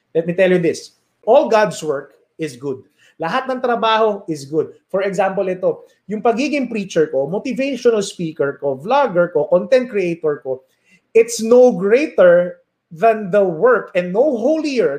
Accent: Filipino